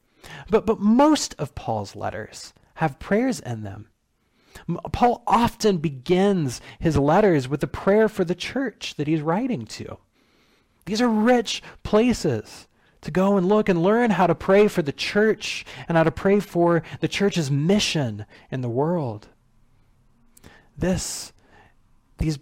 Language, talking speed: English, 145 wpm